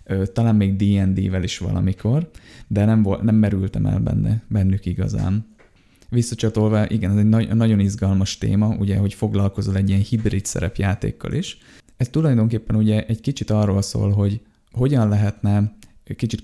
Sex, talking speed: male, 150 wpm